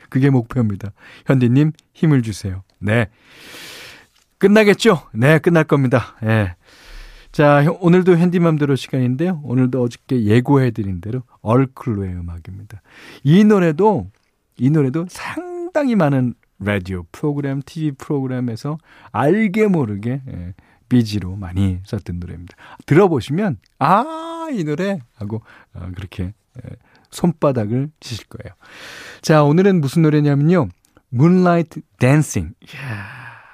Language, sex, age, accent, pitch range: Korean, male, 40-59, native, 105-160 Hz